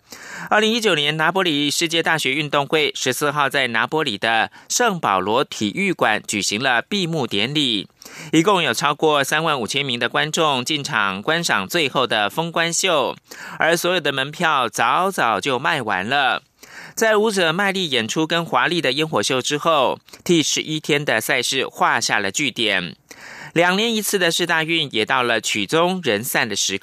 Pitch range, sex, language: 140-180 Hz, male, German